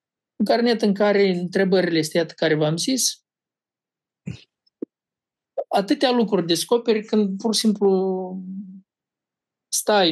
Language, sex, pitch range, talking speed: Romanian, male, 155-195 Hz, 115 wpm